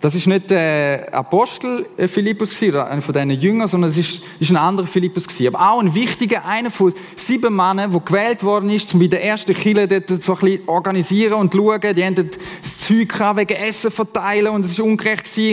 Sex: male